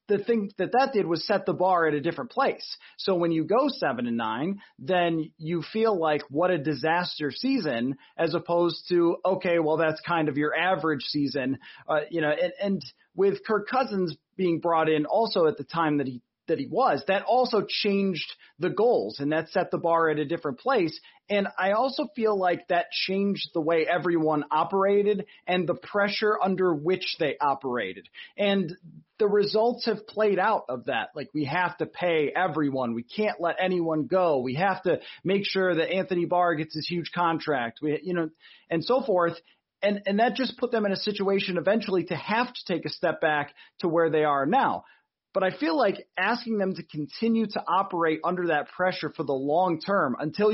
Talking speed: 200 wpm